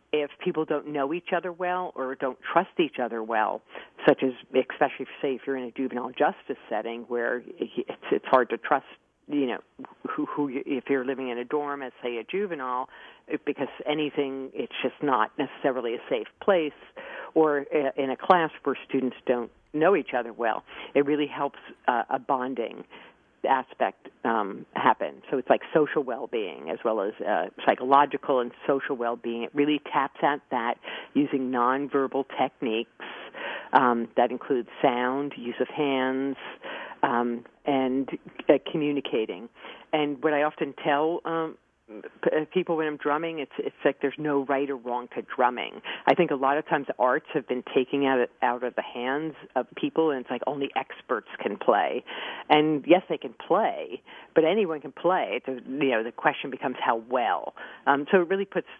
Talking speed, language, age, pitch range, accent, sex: 170 wpm, English, 50-69, 125-150 Hz, American, female